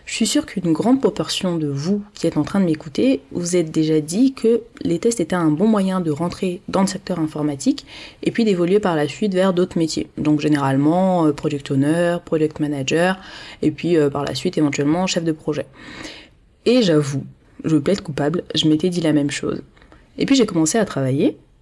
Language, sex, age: French, female, 20-39